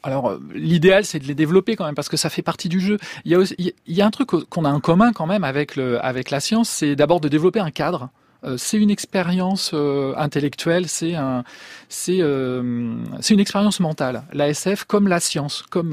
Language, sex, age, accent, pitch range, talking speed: French, male, 40-59, French, 145-190 Hz, 230 wpm